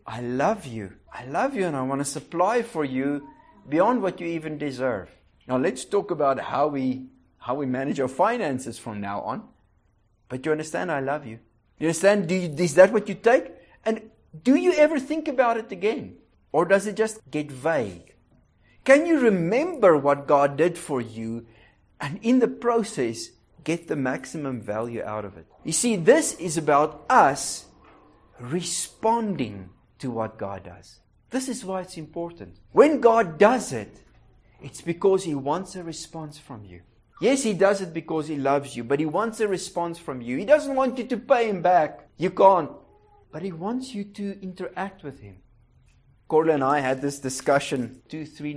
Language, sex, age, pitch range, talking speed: English, male, 50-69, 130-190 Hz, 185 wpm